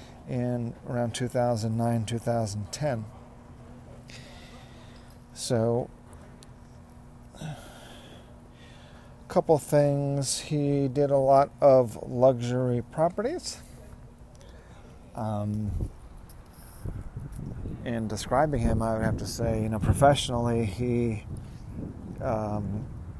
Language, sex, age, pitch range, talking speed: English, male, 40-59, 105-125 Hz, 70 wpm